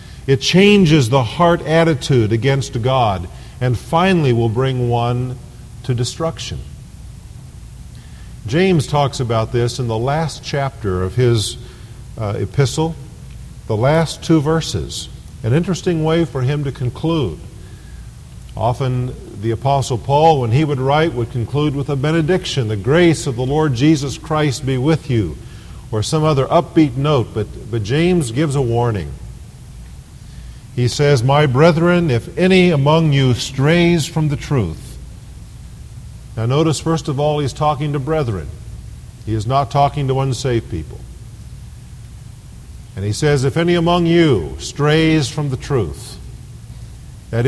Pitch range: 120-155 Hz